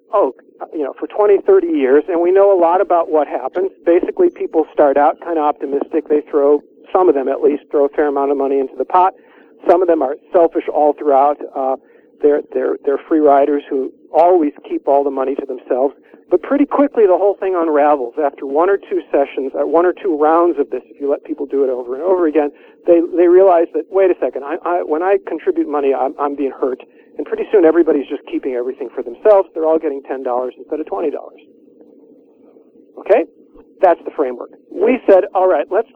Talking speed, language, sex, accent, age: 215 wpm, English, male, American, 50-69